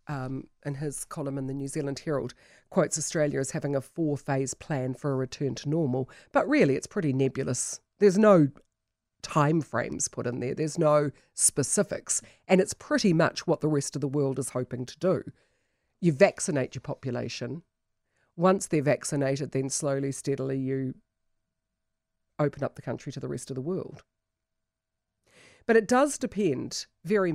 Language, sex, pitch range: English, female, 135-175 Hz